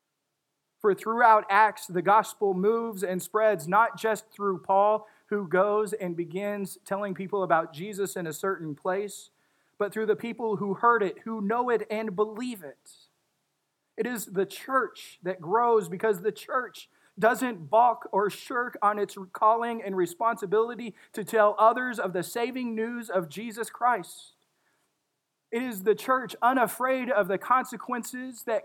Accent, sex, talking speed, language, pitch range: American, male, 155 wpm, English, 195-235 Hz